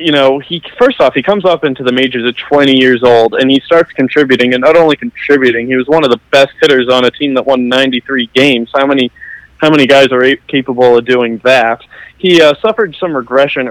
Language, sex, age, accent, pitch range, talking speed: English, male, 20-39, American, 125-145 Hz, 230 wpm